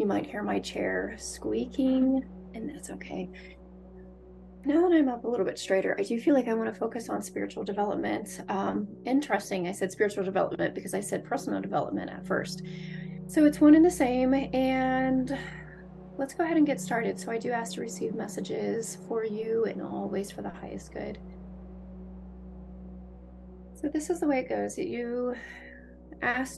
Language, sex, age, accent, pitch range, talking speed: English, female, 30-49, American, 155-225 Hz, 175 wpm